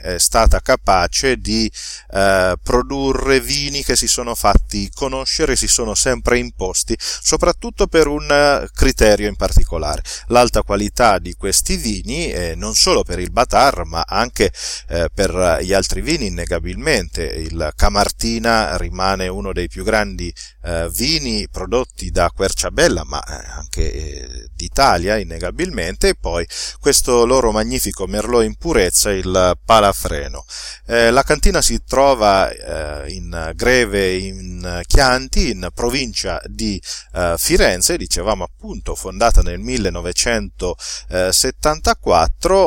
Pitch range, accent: 90-125 Hz, native